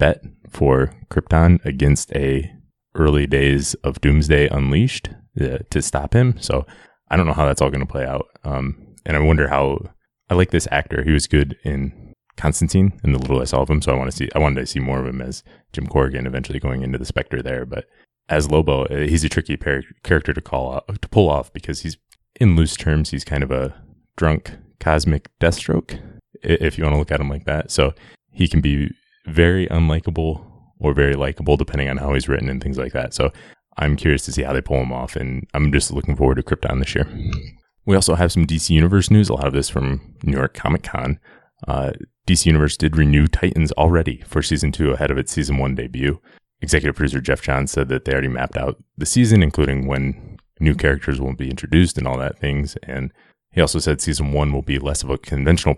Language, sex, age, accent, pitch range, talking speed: English, male, 20-39, American, 65-80 Hz, 220 wpm